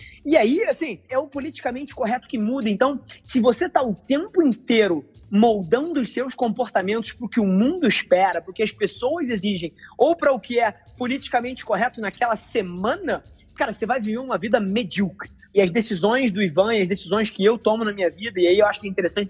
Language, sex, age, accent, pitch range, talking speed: Portuguese, male, 20-39, Brazilian, 200-250 Hz, 215 wpm